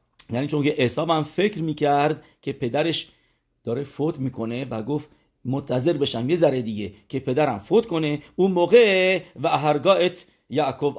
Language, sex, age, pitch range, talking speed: English, male, 50-69, 120-165 Hz, 145 wpm